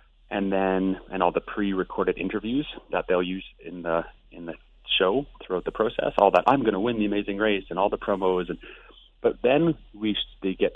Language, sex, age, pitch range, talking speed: English, male, 30-49, 95-110 Hz, 205 wpm